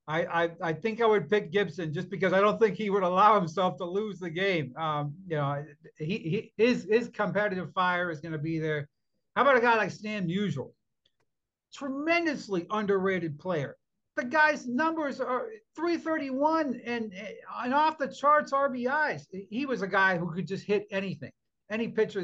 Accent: American